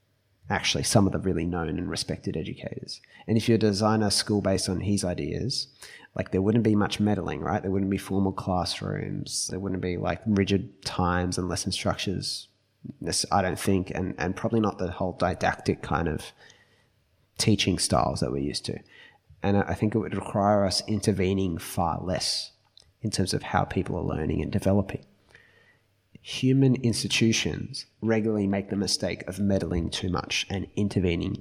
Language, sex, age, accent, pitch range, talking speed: English, male, 20-39, Australian, 90-110 Hz, 170 wpm